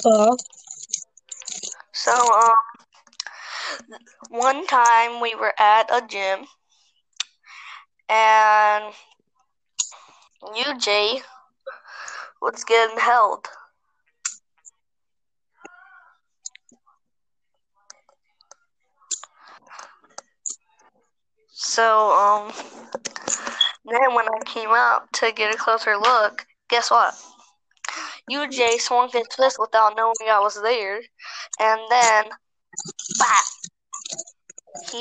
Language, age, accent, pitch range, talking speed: English, 20-39, American, 215-245 Hz, 70 wpm